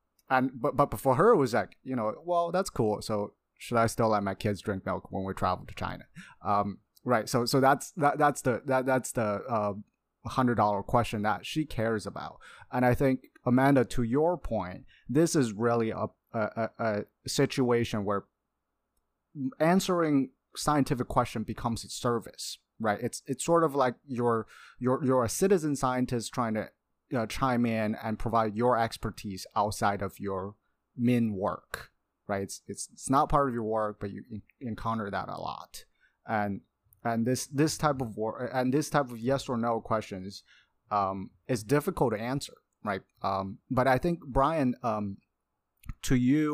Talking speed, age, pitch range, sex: 180 wpm, 30-49, 105-135 Hz, male